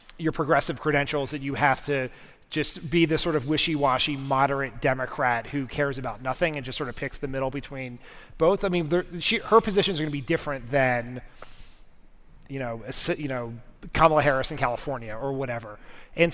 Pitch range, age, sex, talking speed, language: 135-170 Hz, 30-49, male, 185 wpm, English